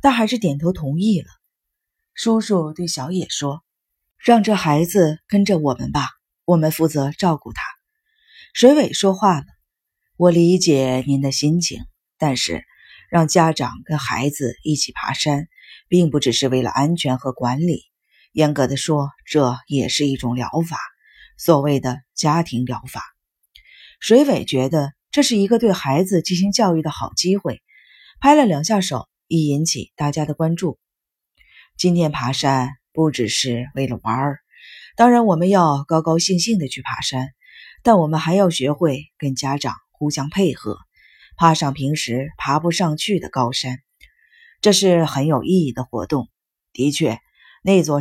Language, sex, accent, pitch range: Chinese, female, native, 135-180 Hz